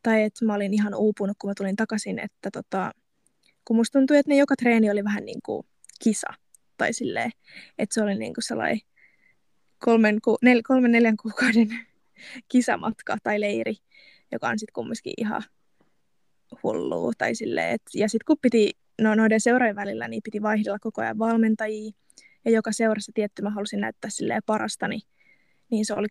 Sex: female